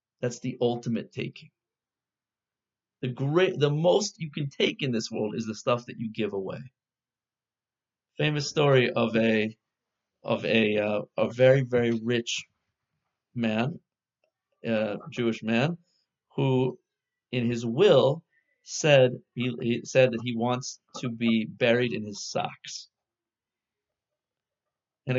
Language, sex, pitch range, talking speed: English, male, 115-140 Hz, 130 wpm